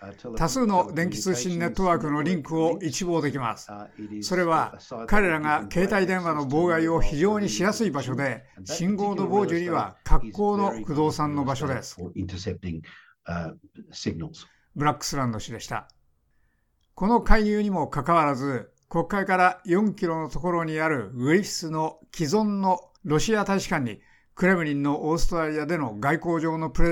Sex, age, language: male, 60-79, Japanese